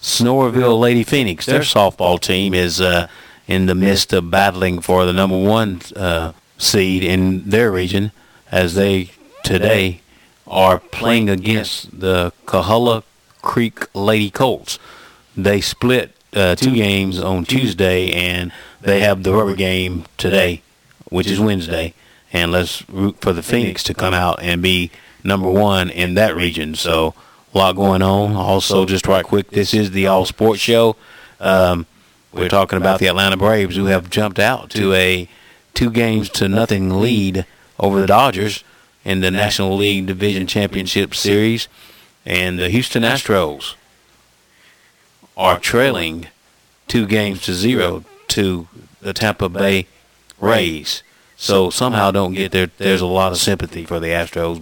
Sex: male